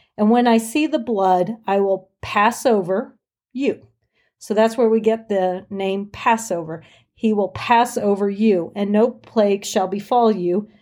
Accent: American